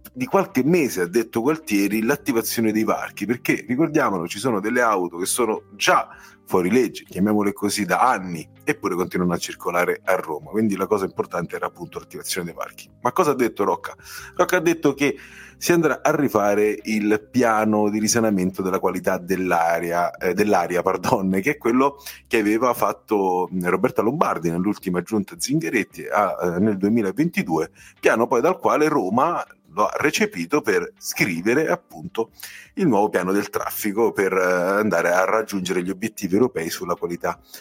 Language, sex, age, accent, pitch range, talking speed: Italian, male, 30-49, native, 95-130 Hz, 165 wpm